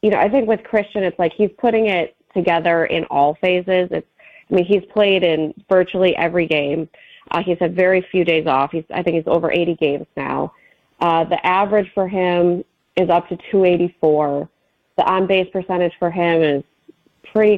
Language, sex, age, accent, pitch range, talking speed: English, female, 30-49, American, 170-195 Hz, 190 wpm